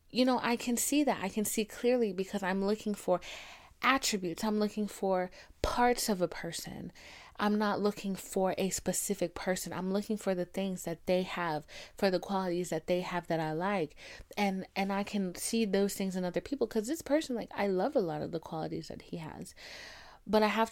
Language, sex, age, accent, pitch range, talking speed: English, female, 30-49, American, 175-215 Hz, 210 wpm